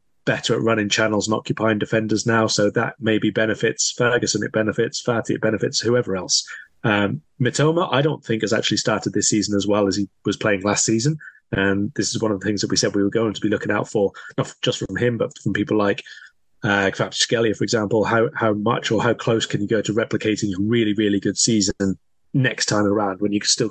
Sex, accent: male, British